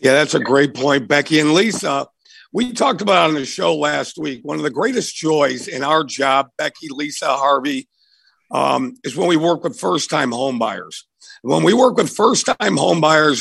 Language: English